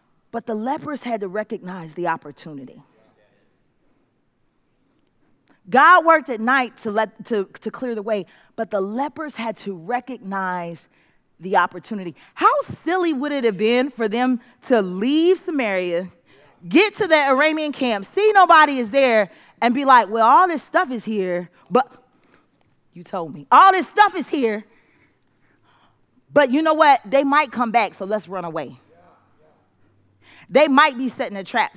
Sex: female